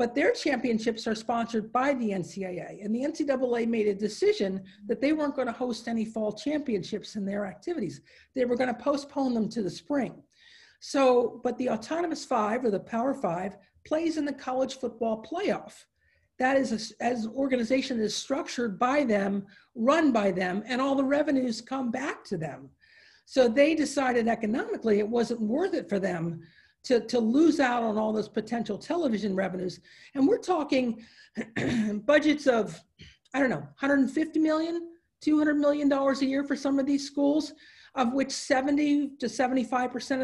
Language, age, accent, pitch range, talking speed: English, 50-69, American, 225-285 Hz, 165 wpm